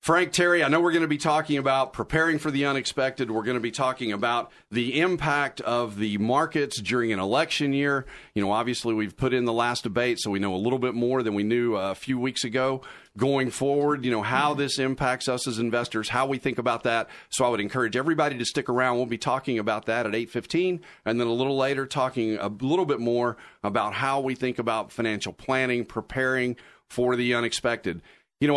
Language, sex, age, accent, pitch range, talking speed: English, male, 40-59, American, 115-145 Hz, 220 wpm